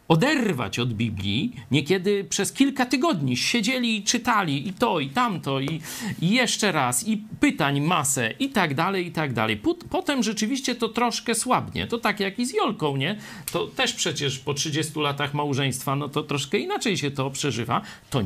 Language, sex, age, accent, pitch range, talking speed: Polish, male, 40-59, native, 130-205 Hz, 175 wpm